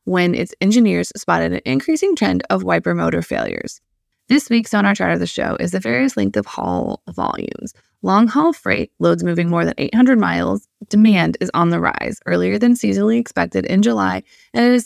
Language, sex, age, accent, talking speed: English, female, 20-39, American, 200 wpm